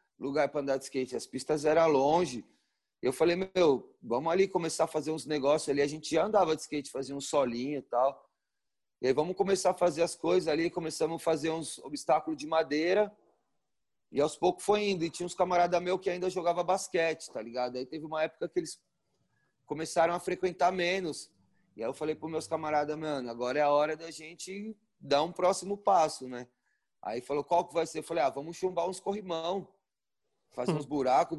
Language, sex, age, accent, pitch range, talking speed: Portuguese, male, 30-49, Brazilian, 150-185 Hz, 205 wpm